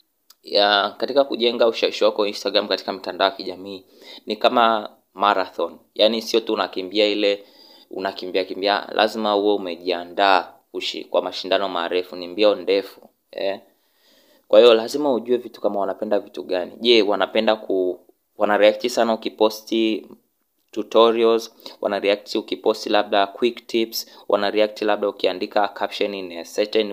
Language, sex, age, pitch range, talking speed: Swahili, male, 20-39, 100-115 Hz, 130 wpm